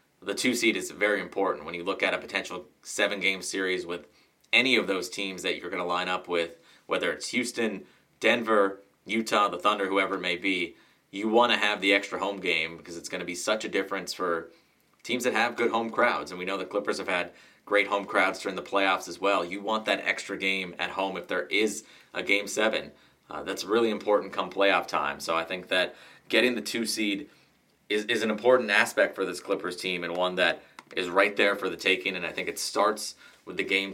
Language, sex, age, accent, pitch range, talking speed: English, male, 30-49, American, 90-105 Hz, 225 wpm